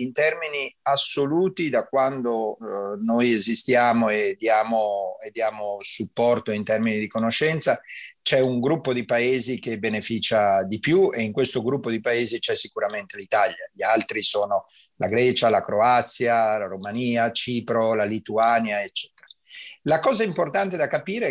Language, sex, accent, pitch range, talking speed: Italian, male, native, 115-145 Hz, 145 wpm